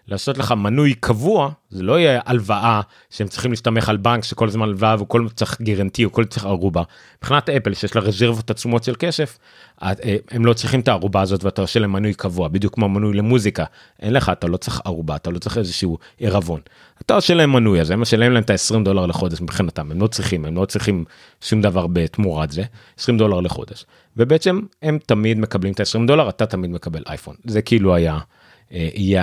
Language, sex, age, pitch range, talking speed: Hebrew, male, 30-49, 90-115 Hz, 155 wpm